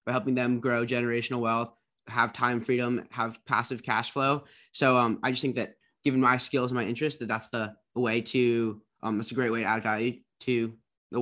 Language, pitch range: English, 115-130 Hz